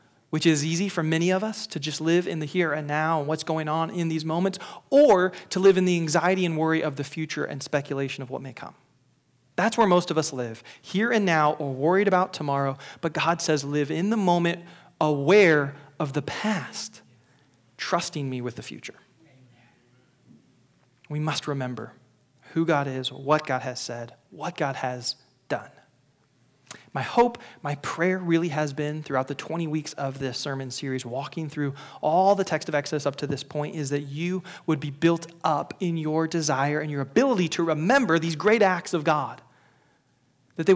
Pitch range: 140-175 Hz